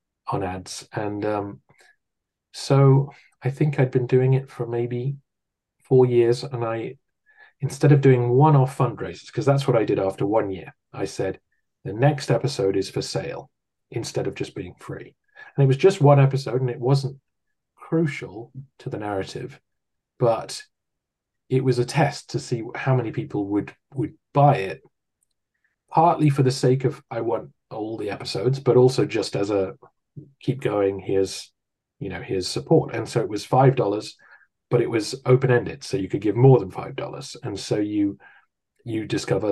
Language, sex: English, male